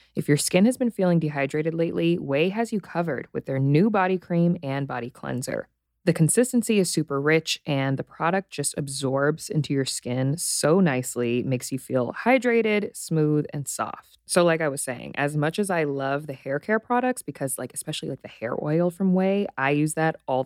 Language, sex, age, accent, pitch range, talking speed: English, female, 20-39, American, 135-175 Hz, 200 wpm